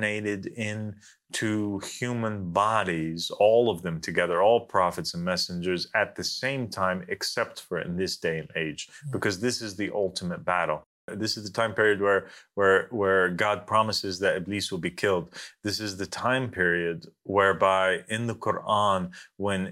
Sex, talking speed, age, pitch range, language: male, 165 wpm, 30-49, 95-110 Hz, English